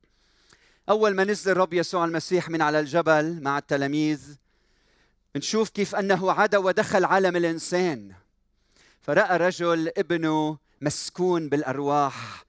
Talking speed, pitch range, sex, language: 110 wpm, 135-175 Hz, male, Arabic